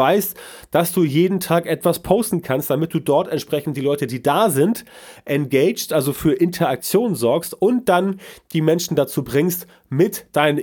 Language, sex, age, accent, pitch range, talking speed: German, male, 30-49, German, 140-175 Hz, 170 wpm